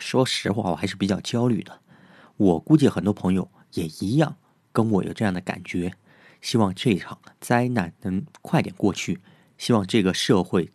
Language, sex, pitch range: Chinese, male, 105-145 Hz